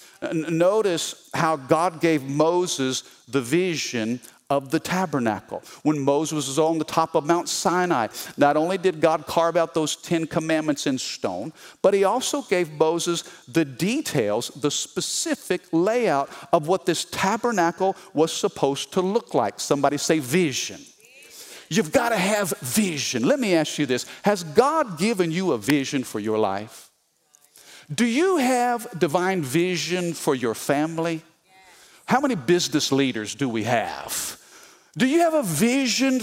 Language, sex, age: English, male, 50-69